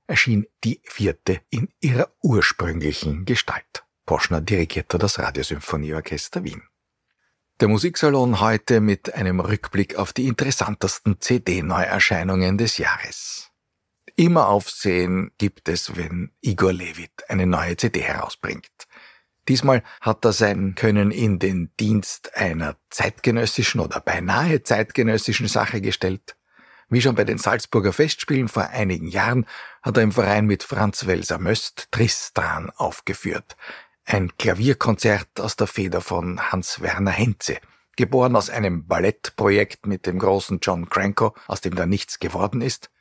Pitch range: 95-115 Hz